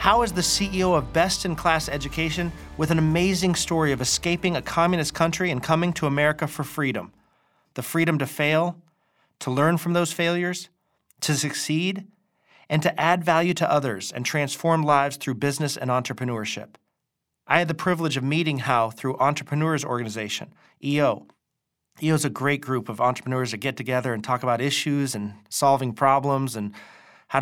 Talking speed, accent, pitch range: 165 wpm, American, 130-165 Hz